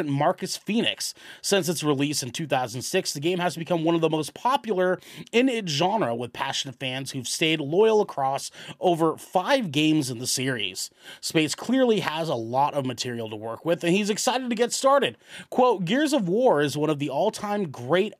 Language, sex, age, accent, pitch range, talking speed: English, male, 30-49, American, 135-190 Hz, 190 wpm